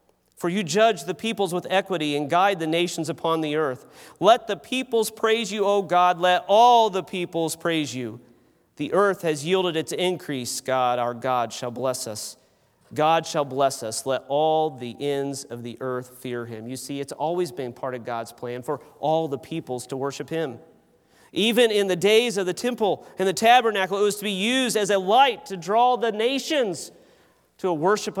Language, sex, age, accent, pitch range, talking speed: English, male, 40-59, American, 130-200 Hz, 200 wpm